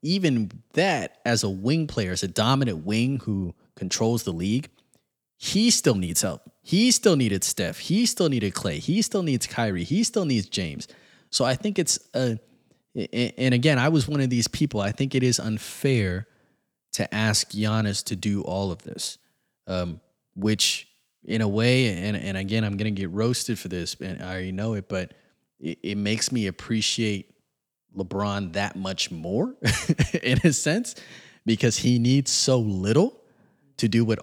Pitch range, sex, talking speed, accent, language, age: 100-130 Hz, male, 175 wpm, American, English, 20-39